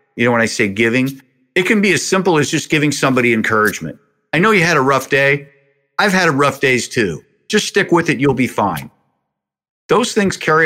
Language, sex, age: English, male, 50-69